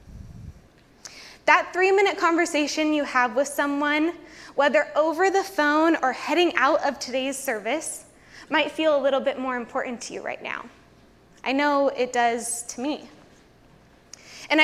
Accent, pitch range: American, 255-310 Hz